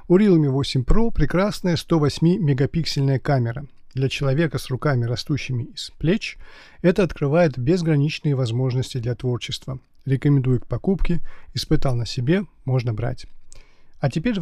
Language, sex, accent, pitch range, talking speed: Russian, male, native, 135-170 Hz, 120 wpm